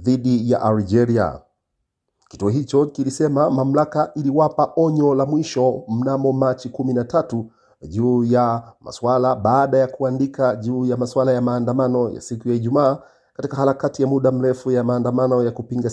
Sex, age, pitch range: male, 50-69, 120-135 Hz